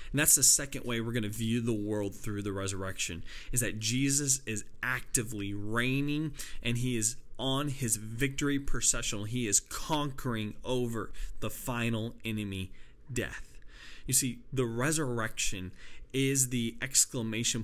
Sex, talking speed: male, 145 wpm